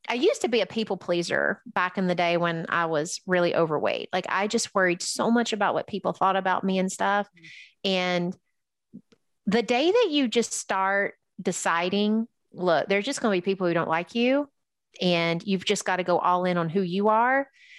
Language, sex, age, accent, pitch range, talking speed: English, female, 30-49, American, 175-220 Hz, 205 wpm